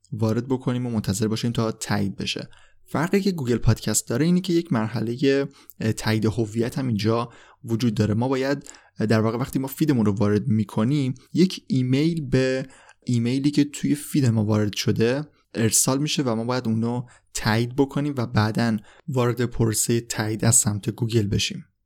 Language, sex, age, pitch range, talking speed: Persian, male, 20-39, 110-140 Hz, 165 wpm